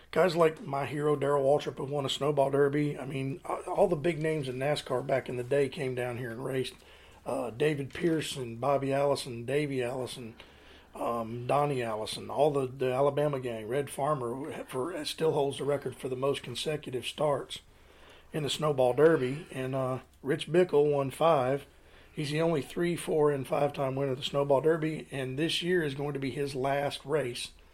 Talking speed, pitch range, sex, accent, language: 190 wpm, 125-150 Hz, male, American, English